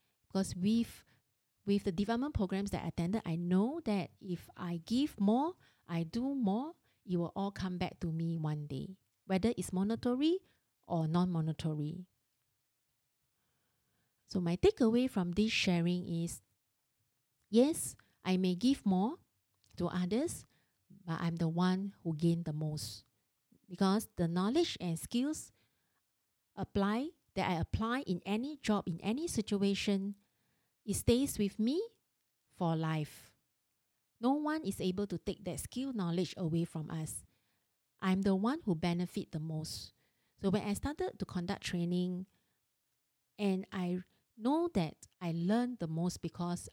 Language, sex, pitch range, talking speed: English, female, 165-205 Hz, 145 wpm